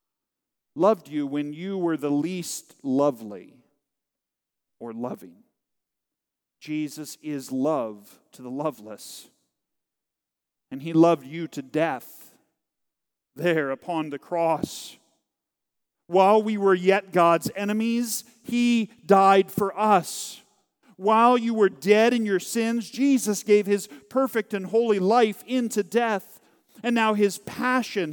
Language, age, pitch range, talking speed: English, 40-59, 170-240 Hz, 120 wpm